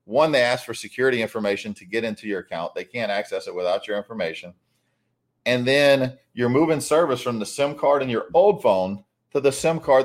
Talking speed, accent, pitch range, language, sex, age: 210 wpm, American, 105-130 Hz, English, male, 40-59